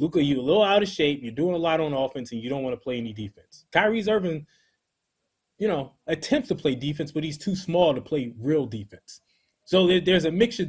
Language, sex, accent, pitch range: English, male, American, 125-170 Hz